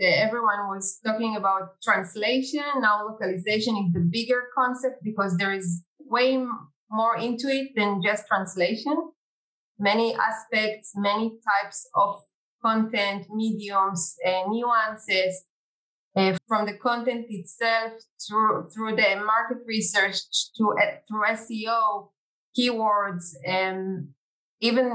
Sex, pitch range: female, 195-235 Hz